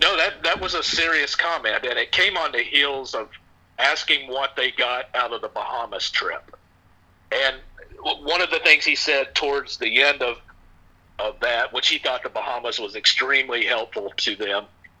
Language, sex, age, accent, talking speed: English, male, 50-69, American, 185 wpm